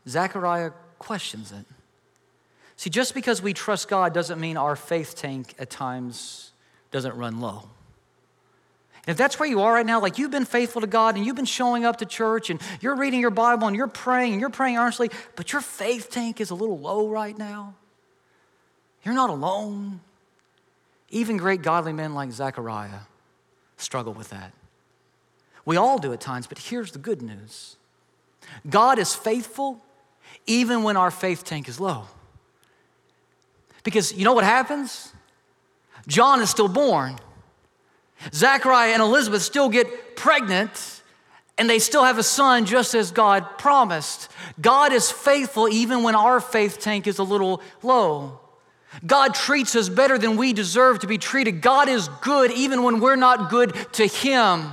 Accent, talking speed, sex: American, 165 wpm, male